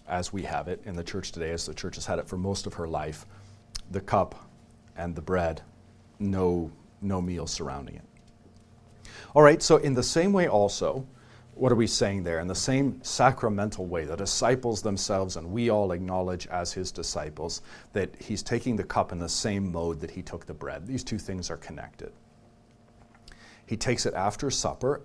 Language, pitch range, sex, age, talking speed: English, 95-115 Hz, male, 40-59, 195 wpm